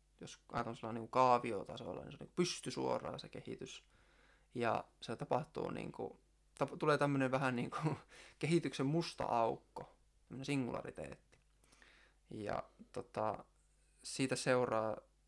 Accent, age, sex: native, 20-39, male